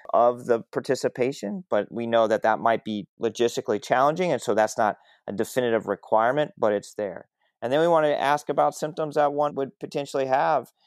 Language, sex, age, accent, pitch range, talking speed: English, male, 30-49, American, 110-130 Hz, 195 wpm